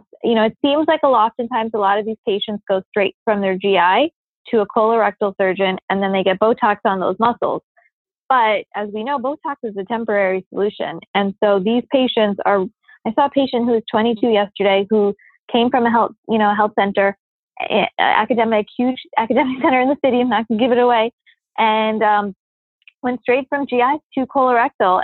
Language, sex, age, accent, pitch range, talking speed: English, female, 20-39, American, 210-255 Hz, 195 wpm